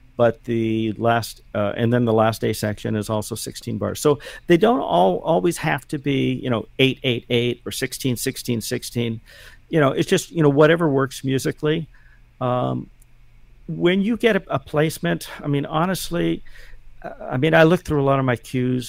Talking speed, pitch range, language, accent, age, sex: 190 wpm, 110-140 Hz, English, American, 50-69, male